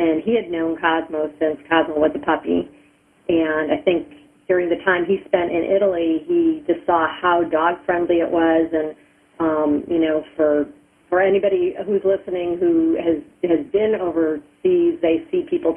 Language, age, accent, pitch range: English, 40-59, American, 155-180 Hz